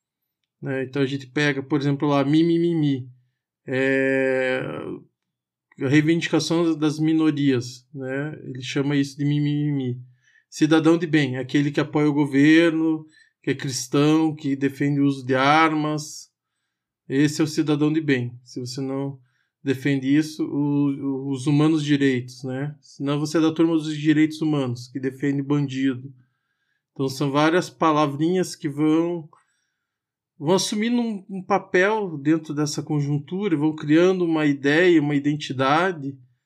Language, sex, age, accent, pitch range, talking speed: Portuguese, male, 20-39, Brazilian, 135-165 Hz, 145 wpm